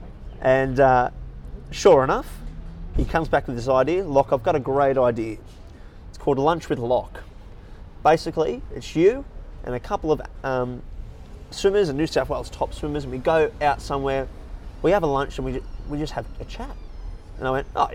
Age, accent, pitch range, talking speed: 20-39, Australian, 115-155 Hz, 190 wpm